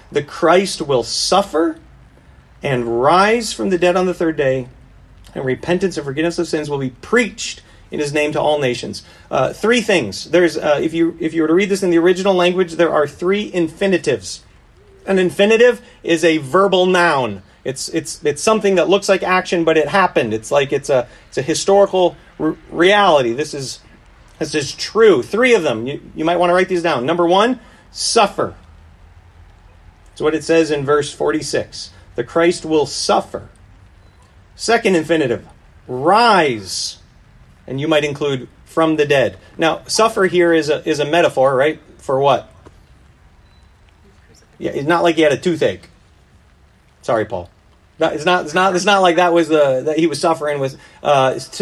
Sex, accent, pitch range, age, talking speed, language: male, American, 130-180 Hz, 40-59, 175 wpm, English